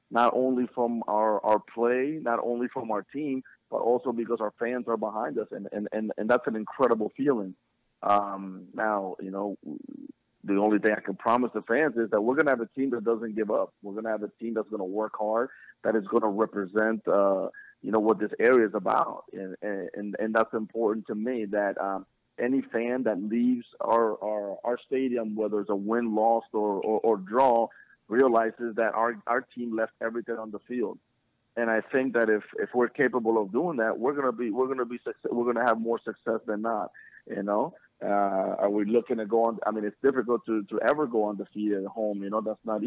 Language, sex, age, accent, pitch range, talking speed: English, male, 30-49, American, 105-120 Hz, 225 wpm